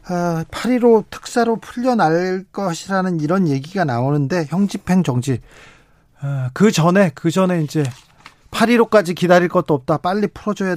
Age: 40-59